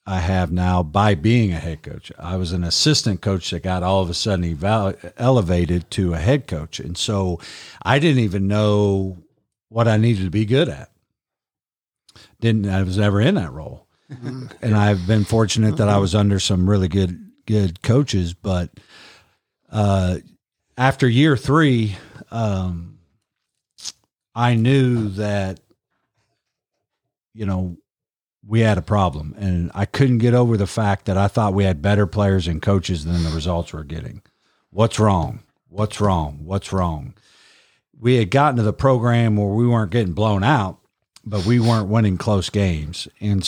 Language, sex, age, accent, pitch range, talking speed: English, male, 50-69, American, 95-115 Hz, 165 wpm